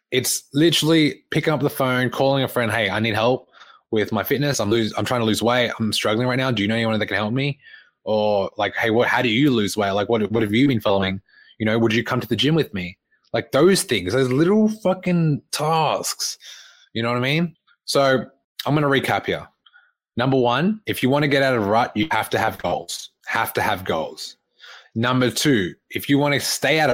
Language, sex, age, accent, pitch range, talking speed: English, male, 20-39, Australian, 110-135 Hz, 240 wpm